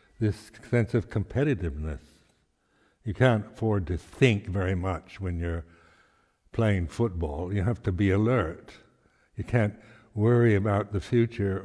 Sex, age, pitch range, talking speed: male, 60-79, 100-115 Hz, 135 wpm